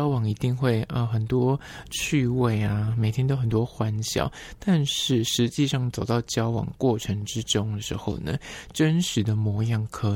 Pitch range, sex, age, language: 110-135 Hz, male, 20-39, Chinese